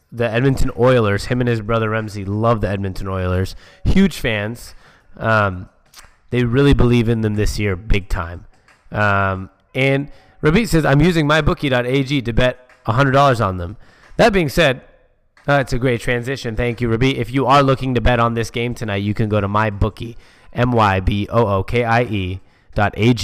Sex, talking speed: male, 165 wpm